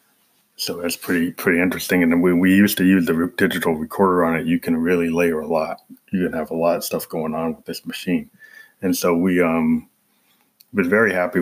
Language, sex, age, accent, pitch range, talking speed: English, male, 20-39, American, 85-100 Hz, 225 wpm